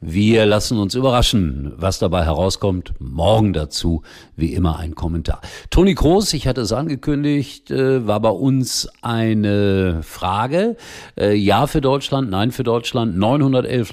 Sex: male